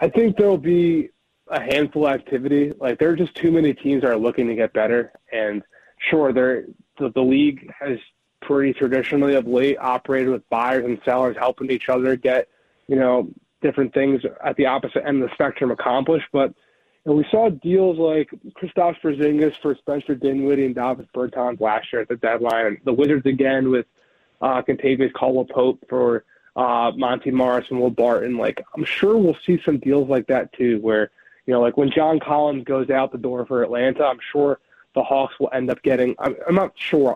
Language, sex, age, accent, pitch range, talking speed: English, male, 20-39, American, 125-150 Hz, 200 wpm